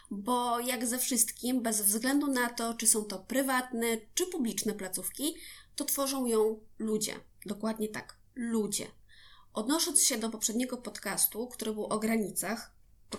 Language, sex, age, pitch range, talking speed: Polish, female, 20-39, 215-260 Hz, 145 wpm